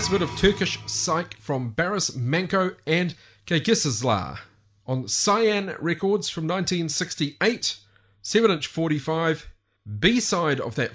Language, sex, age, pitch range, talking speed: English, male, 30-49, 125-190 Hz, 105 wpm